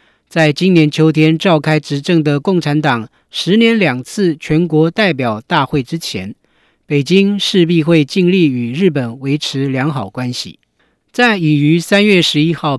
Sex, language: male, Chinese